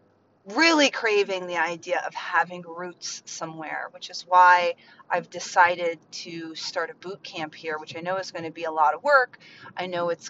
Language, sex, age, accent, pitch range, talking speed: English, female, 30-49, American, 165-200 Hz, 190 wpm